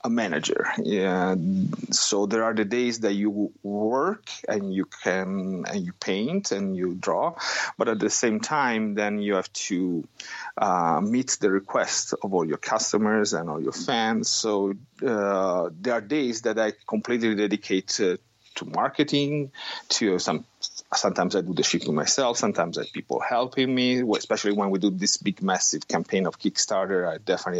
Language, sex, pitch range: English, male, 105-145 Hz